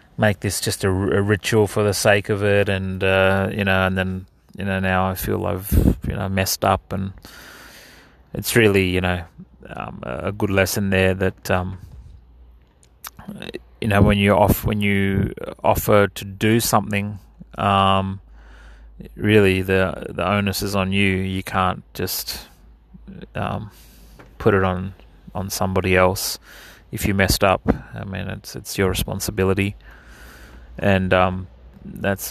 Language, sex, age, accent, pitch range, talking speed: English, male, 30-49, Australian, 95-100 Hz, 150 wpm